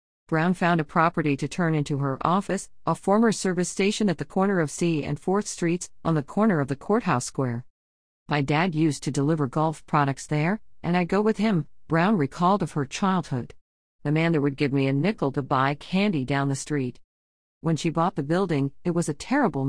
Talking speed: 210 wpm